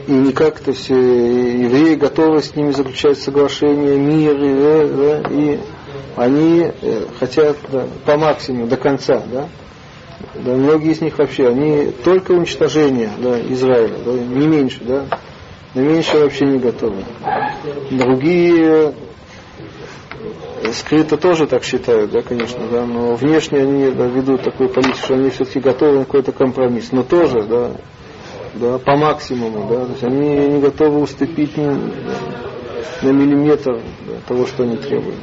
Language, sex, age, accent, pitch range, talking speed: Russian, male, 40-59, native, 130-150 Hz, 145 wpm